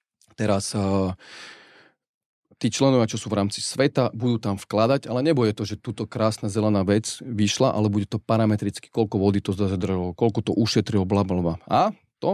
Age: 40-59